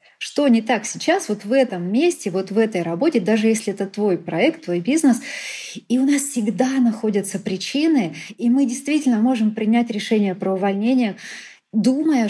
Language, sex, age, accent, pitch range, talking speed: Russian, female, 20-39, native, 200-245 Hz, 165 wpm